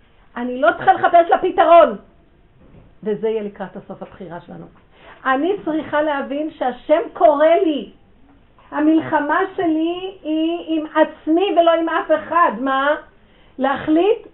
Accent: native